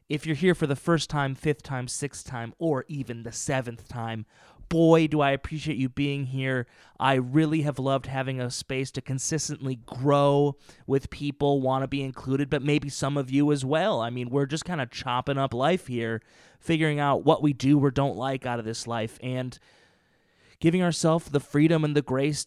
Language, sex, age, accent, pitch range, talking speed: English, male, 20-39, American, 120-150 Hz, 205 wpm